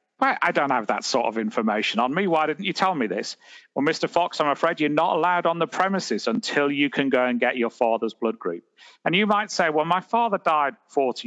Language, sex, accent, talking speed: English, male, British, 245 wpm